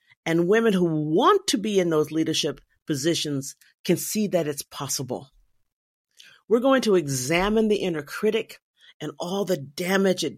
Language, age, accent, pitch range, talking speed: English, 50-69, American, 150-215 Hz, 155 wpm